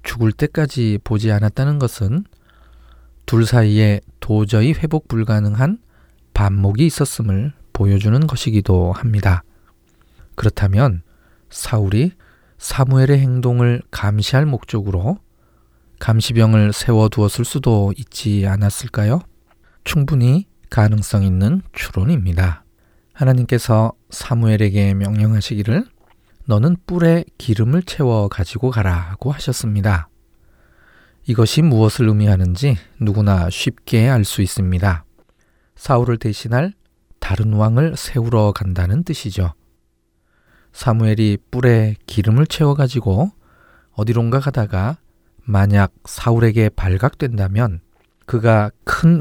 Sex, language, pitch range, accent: male, Korean, 100-125 Hz, native